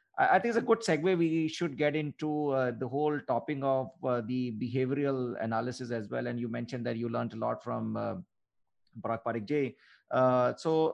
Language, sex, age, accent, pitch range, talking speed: English, male, 30-49, Indian, 125-145 Hz, 195 wpm